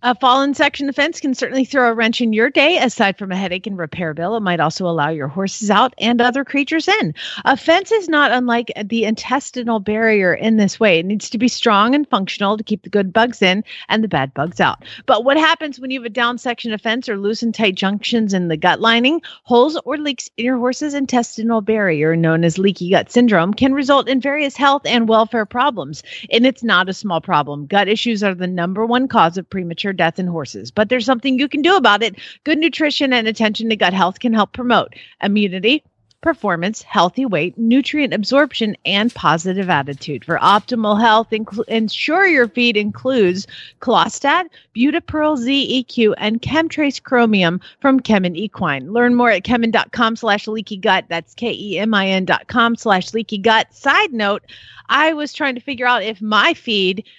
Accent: American